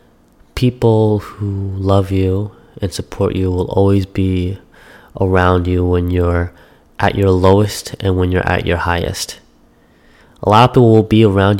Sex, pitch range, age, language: male, 90-100 Hz, 20-39, English